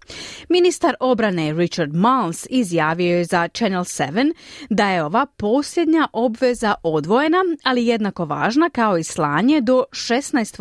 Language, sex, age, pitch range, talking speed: Croatian, female, 30-49, 165-270 Hz, 130 wpm